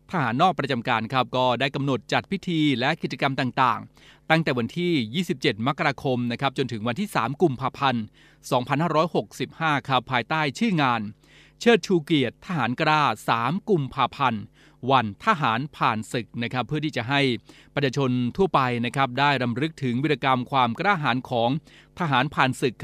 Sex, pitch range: male, 125-155 Hz